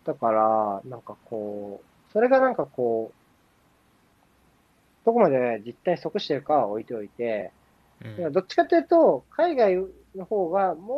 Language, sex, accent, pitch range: Japanese, male, native, 110-185 Hz